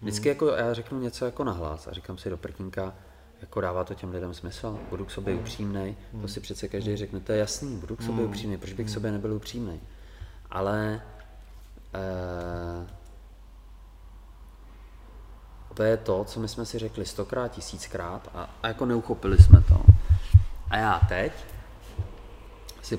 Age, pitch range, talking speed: 30-49, 80-110 Hz, 160 wpm